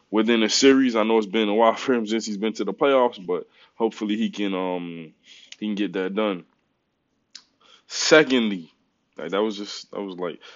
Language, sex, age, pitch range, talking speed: English, male, 20-39, 100-115 Hz, 200 wpm